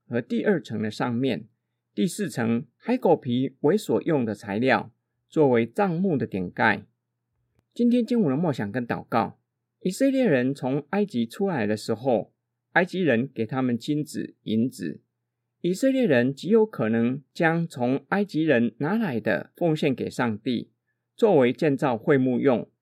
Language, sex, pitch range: Chinese, male, 120-200 Hz